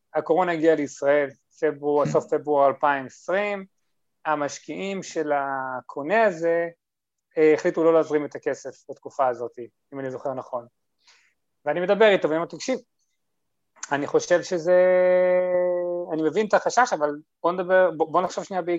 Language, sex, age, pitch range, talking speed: Hebrew, male, 30-49, 140-180 Hz, 120 wpm